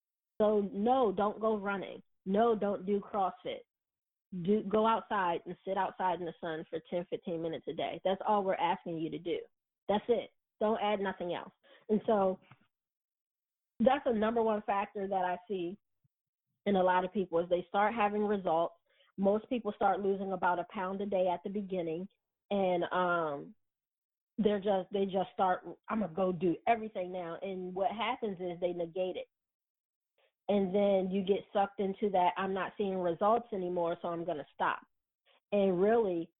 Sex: female